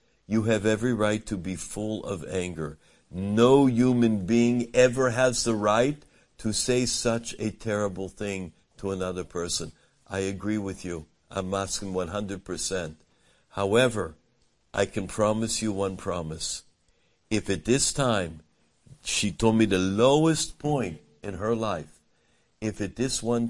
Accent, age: American, 60-79